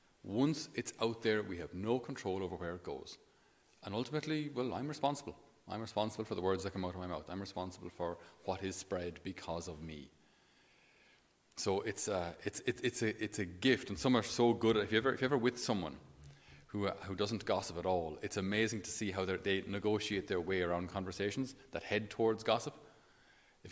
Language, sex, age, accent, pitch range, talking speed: English, male, 30-49, Irish, 90-110 Hz, 215 wpm